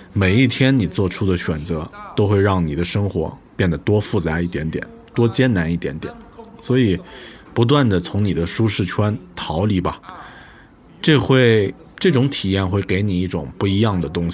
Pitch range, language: 85-110 Hz, Chinese